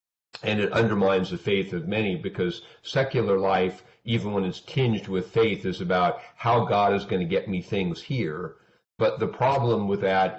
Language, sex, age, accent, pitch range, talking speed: English, male, 50-69, American, 85-110 Hz, 185 wpm